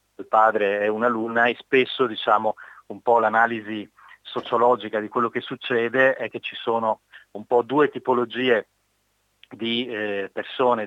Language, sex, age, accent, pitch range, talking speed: Italian, male, 30-49, native, 100-115 Hz, 145 wpm